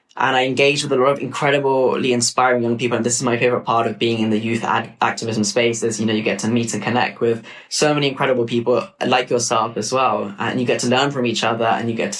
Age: 10-29